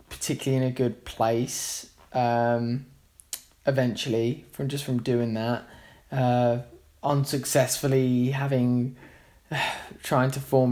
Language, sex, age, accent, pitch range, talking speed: English, male, 20-39, British, 120-150 Hz, 100 wpm